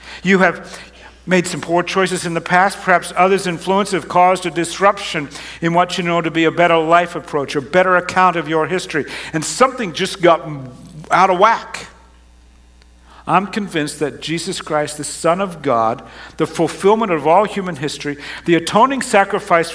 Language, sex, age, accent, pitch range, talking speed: English, male, 60-79, American, 145-185 Hz, 175 wpm